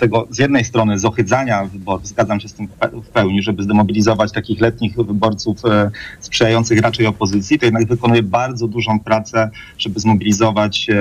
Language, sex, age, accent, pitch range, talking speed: Polish, male, 30-49, native, 105-120 Hz, 145 wpm